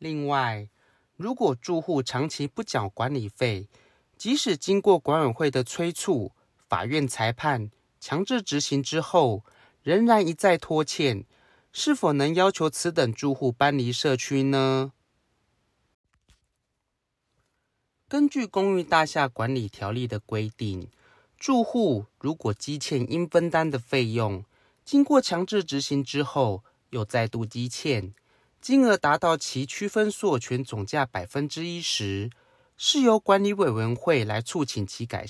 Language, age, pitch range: Chinese, 30-49, 115-170 Hz